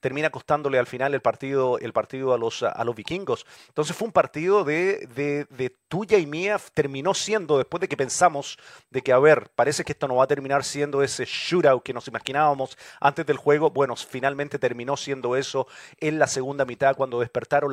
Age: 40-59